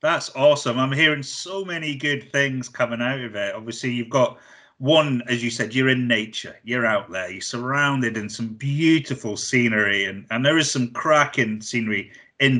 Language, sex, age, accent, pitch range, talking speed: English, male, 30-49, British, 110-140 Hz, 185 wpm